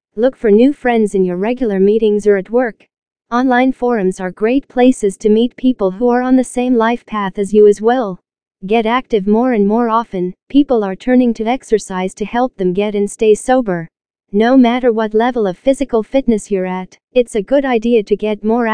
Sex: female